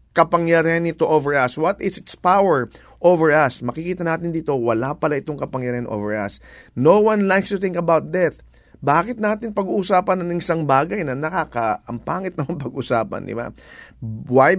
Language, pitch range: English, 145-195 Hz